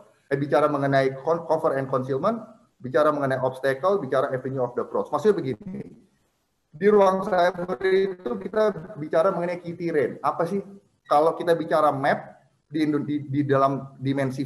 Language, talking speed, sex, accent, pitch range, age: Indonesian, 145 wpm, male, native, 135-175 Hz, 30-49